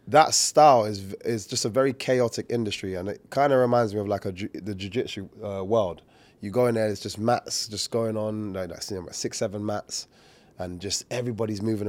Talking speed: 210 wpm